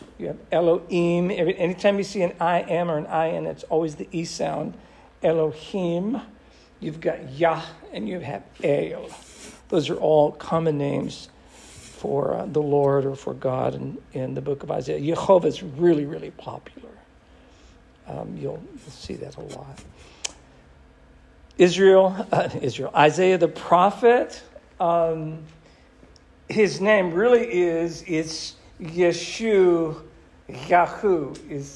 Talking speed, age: 130 wpm, 60-79